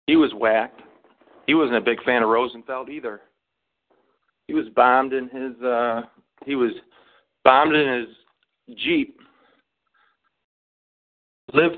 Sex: male